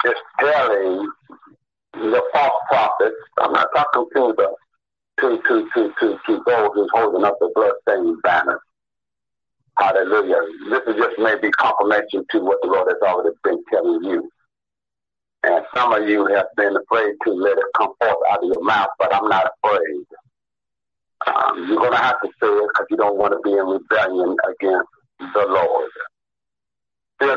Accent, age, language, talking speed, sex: American, 60-79, English, 170 wpm, male